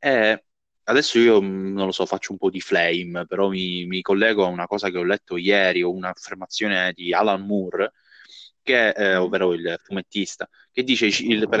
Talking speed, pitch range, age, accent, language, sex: 185 wpm, 95-115 Hz, 20-39, native, Italian, male